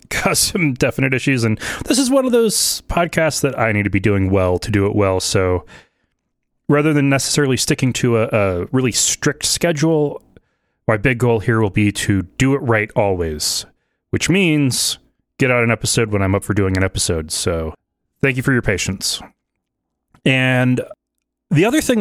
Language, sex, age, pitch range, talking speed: English, male, 30-49, 110-165 Hz, 185 wpm